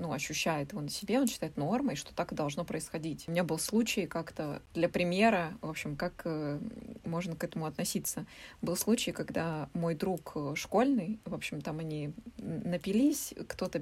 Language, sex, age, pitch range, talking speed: Russian, female, 20-39, 170-215 Hz, 165 wpm